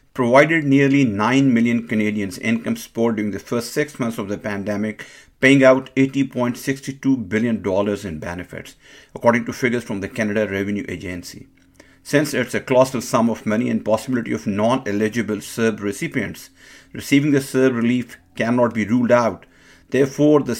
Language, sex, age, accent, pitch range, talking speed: English, male, 50-69, Indian, 110-135 Hz, 150 wpm